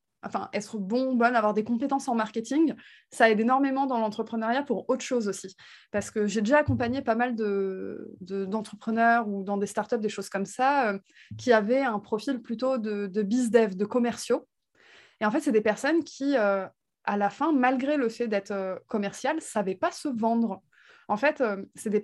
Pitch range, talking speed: 205-255 Hz, 200 wpm